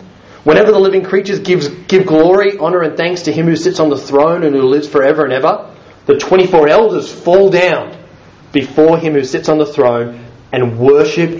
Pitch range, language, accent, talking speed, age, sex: 140-200 Hz, English, Australian, 195 wpm, 30-49, male